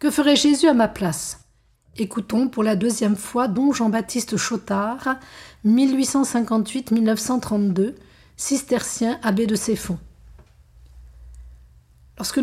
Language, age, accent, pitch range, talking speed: French, 50-69, French, 200-250 Hz, 95 wpm